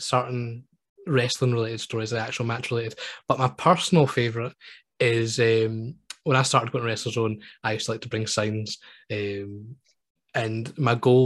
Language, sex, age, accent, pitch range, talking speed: English, male, 10-29, British, 110-130 Hz, 155 wpm